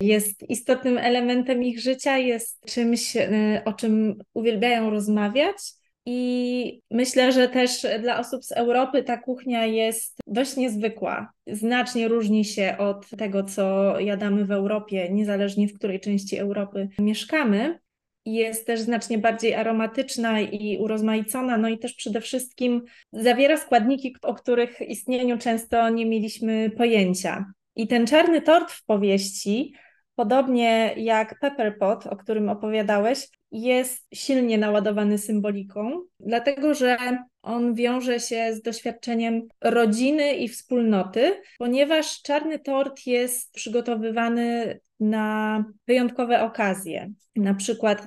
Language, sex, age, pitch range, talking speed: Polish, female, 20-39, 215-250 Hz, 120 wpm